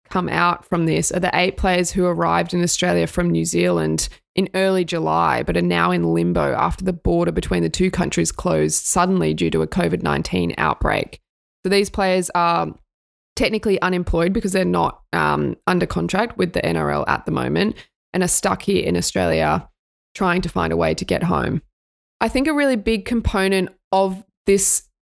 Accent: Australian